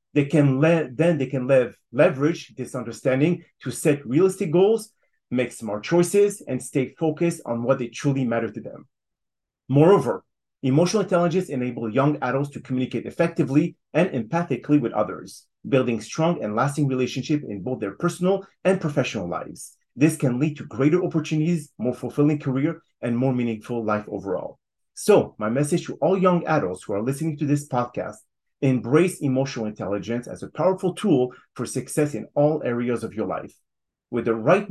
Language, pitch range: English, 120-160 Hz